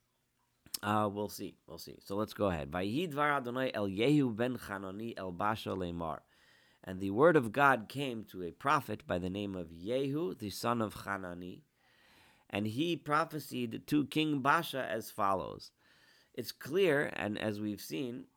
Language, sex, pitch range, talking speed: English, male, 95-125 Hz, 135 wpm